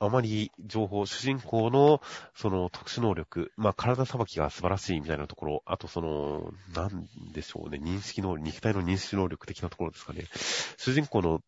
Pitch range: 80-115 Hz